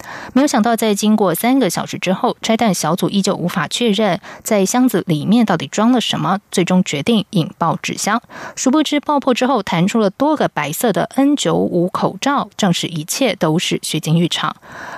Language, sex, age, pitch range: German, female, 20-39, 175-235 Hz